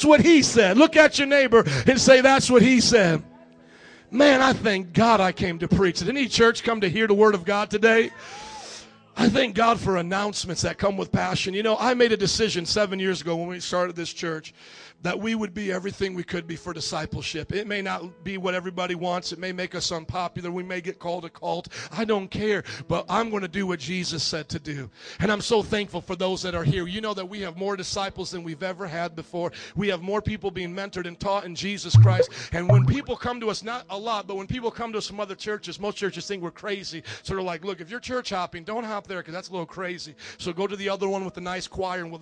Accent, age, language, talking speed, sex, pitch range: American, 40-59, English, 255 wpm, male, 180-245 Hz